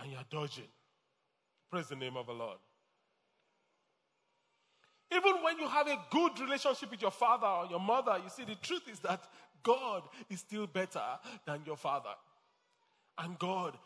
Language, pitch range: English, 170-225 Hz